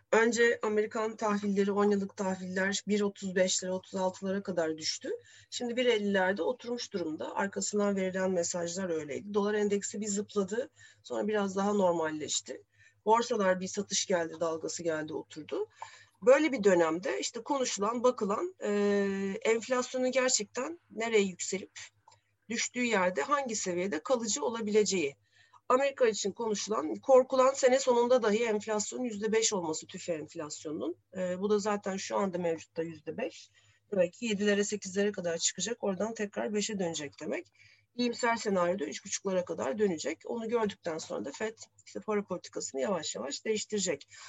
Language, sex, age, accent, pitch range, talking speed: Turkish, female, 40-59, native, 180-225 Hz, 135 wpm